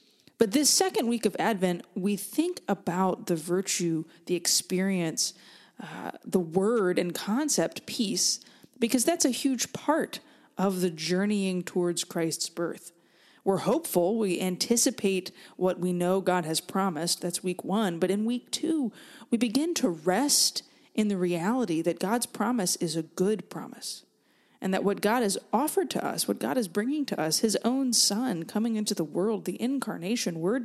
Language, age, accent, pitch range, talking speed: English, 20-39, American, 180-235 Hz, 165 wpm